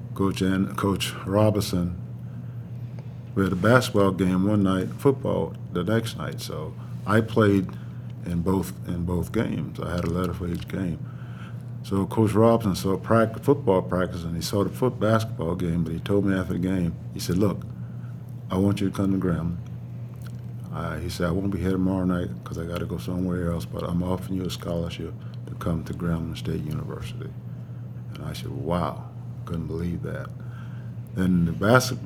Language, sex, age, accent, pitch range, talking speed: English, male, 50-69, American, 85-120 Hz, 180 wpm